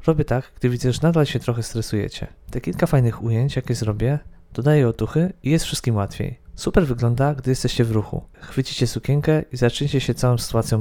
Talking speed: 190 wpm